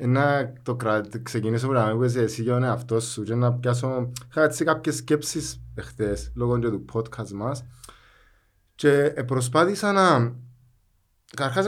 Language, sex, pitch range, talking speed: Greek, male, 115-140 Hz, 105 wpm